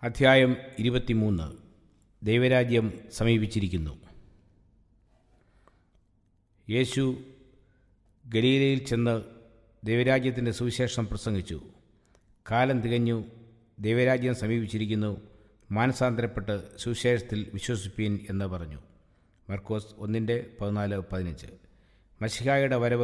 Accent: Indian